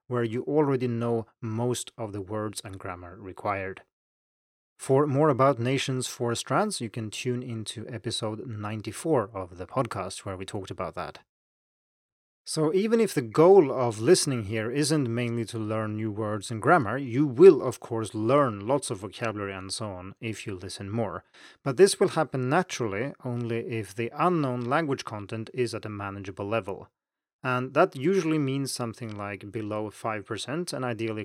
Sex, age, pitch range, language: male, 30-49, 105-145 Hz, Chinese